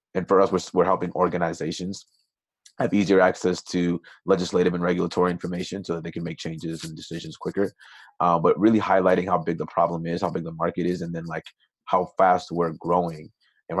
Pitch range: 80-90 Hz